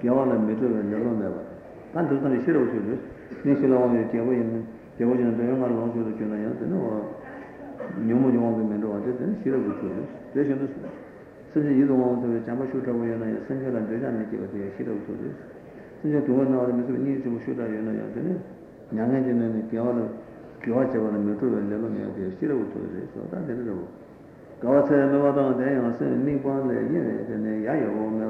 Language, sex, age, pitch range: Italian, male, 60-79, 110-130 Hz